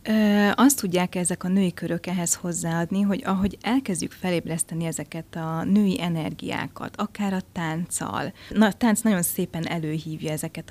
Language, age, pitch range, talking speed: Hungarian, 30-49, 160-185 Hz, 150 wpm